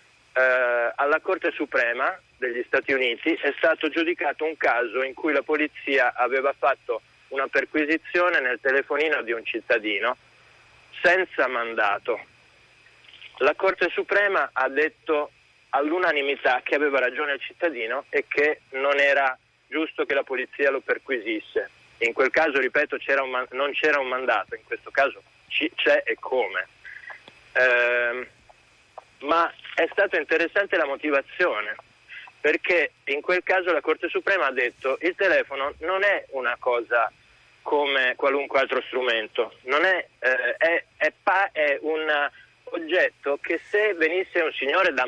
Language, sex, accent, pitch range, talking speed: Italian, male, native, 135-195 Hz, 140 wpm